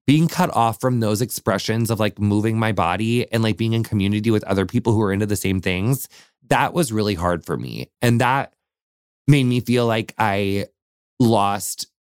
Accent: American